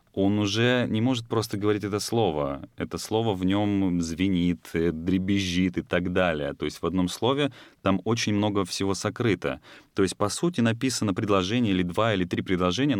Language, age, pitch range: Russian, 30-49, 90-110 Hz